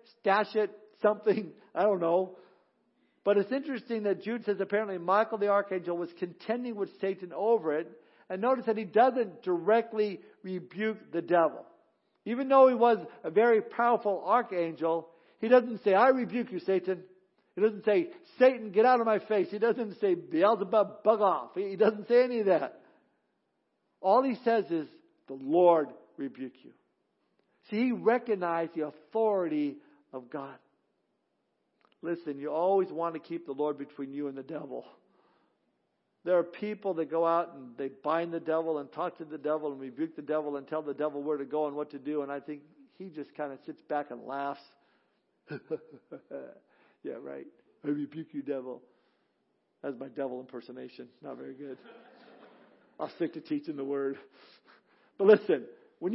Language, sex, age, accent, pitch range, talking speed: English, male, 60-79, American, 155-225 Hz, 170 wpm